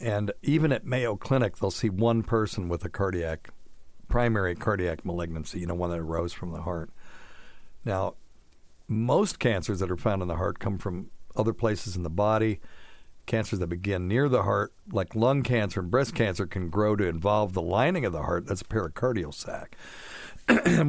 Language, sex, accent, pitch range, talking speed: English, male, American, 90-115 Hz, 185 wpm